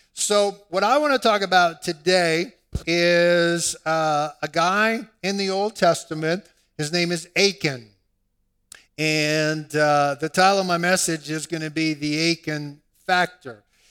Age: 50-69